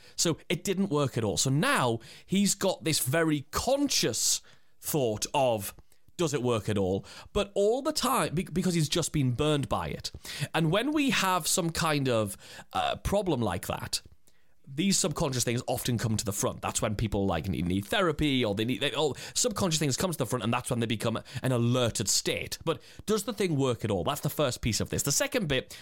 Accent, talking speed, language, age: British, 210 wpm, English, 30-49